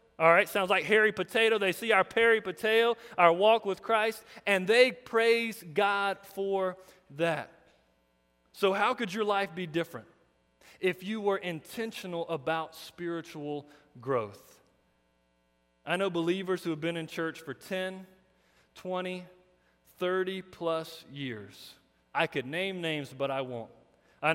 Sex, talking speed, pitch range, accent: male, 140 wpm, 140-190 Hz, American